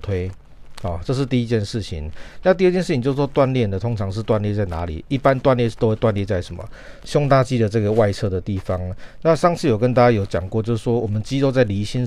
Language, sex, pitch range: Chinese, male, 100-125 Hz